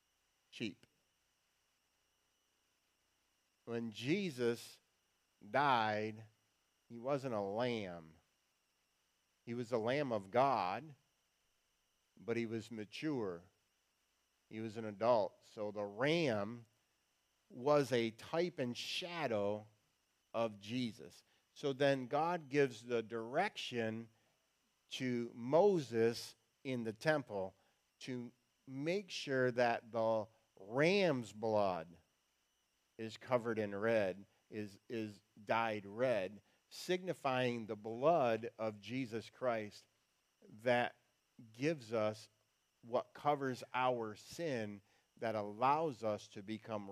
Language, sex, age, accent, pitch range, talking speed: English, male, 50-69, American, 105-130 Hz, 95 wpm